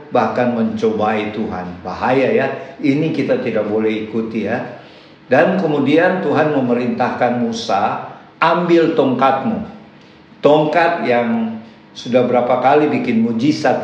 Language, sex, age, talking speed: Indonesian, male, 50-69, 110 wpm